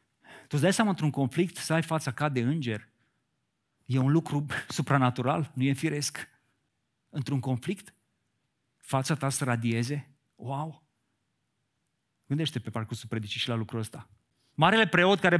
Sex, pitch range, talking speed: male, 130-175 Hz, 140 wpm